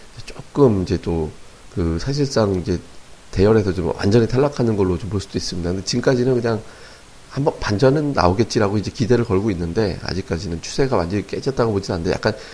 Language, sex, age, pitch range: Korean, male, 40-59, 90-120 Hz